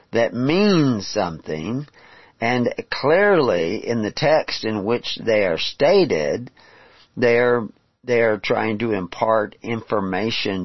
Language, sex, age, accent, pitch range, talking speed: English, male, 50-69, American, 95-110 Hz, 105 wpm